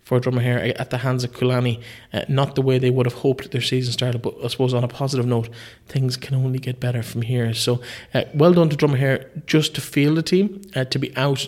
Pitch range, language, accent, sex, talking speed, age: 120-130 Hz, English, Irish, male, 240 wpm, 20-39